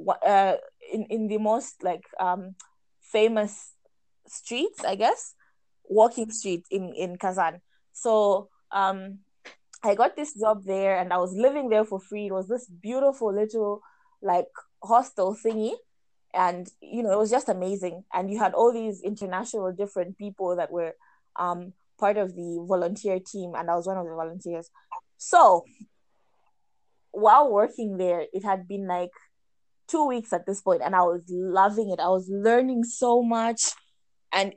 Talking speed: 160 wpm